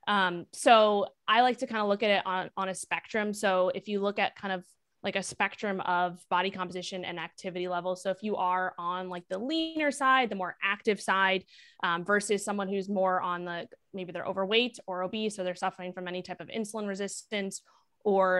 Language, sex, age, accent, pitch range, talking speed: English, female, 20-39, American, 185-215 Hz, 210 wpm